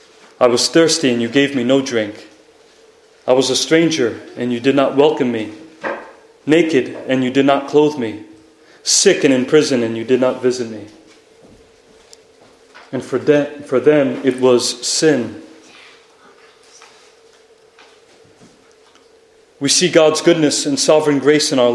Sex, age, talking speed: male, 30-49, 145 wpm